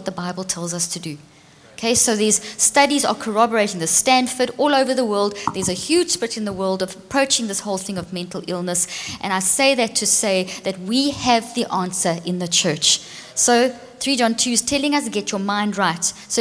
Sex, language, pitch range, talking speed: female, English, 195-245 Hz, 220 wpm